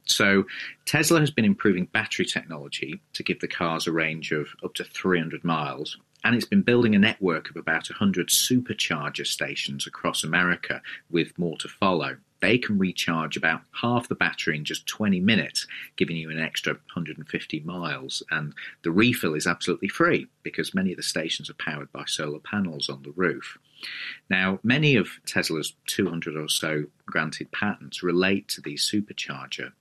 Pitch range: 80-110 Hz